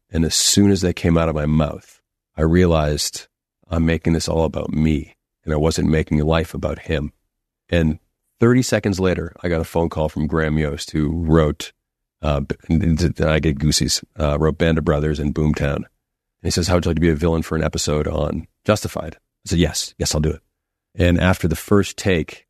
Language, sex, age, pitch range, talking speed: English, male, 40-59, 80-90 Hz, 210 wpm